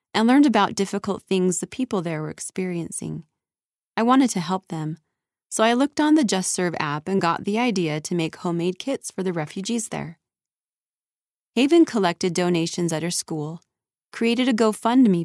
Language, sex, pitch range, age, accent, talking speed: English, female, 170-220 Hz, 30-49, American, 175 wpm